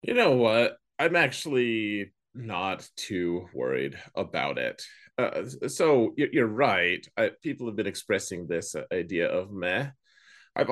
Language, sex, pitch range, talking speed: English, male, 100-135 Hz, 135 wpm